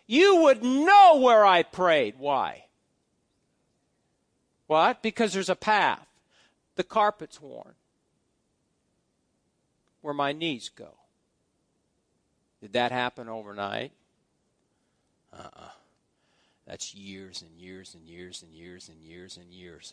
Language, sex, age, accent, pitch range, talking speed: English, male, 50-69, American, 175-280 Hz, 110 wpm